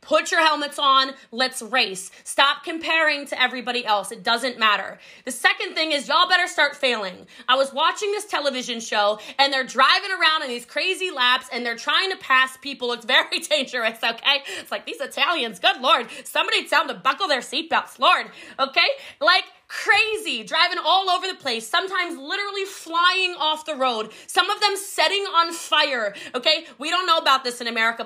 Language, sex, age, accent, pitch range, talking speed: English, female, 20-39, American, 260-335 Hz, 190 wpm